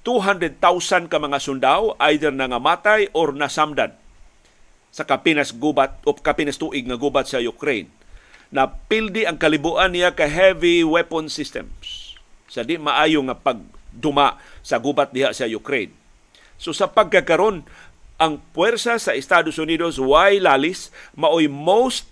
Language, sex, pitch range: Filipino, male, 140-175 Hz